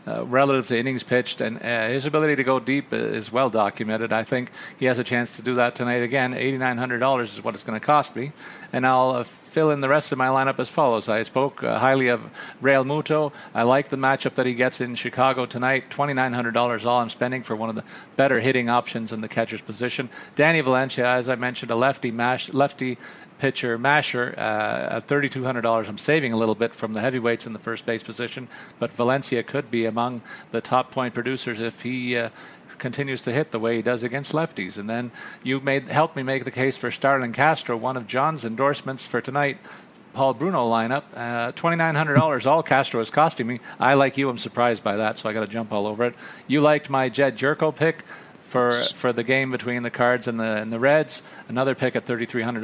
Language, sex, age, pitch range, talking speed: English, male, 40-59, 120-140 Hz, 230 wpm